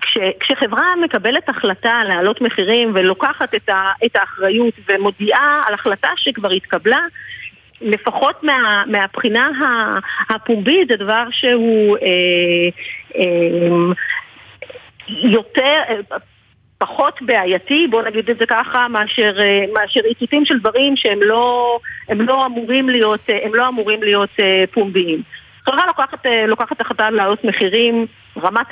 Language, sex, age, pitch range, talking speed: Hebrew, female, 50-69, 200-250 Hz, 110 wpm